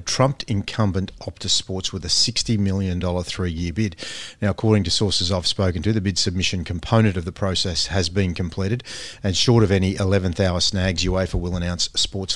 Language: English